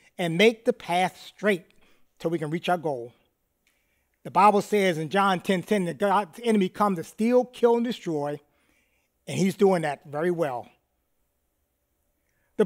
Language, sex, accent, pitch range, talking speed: English, male, American, 170-230 Hz, 165 wpm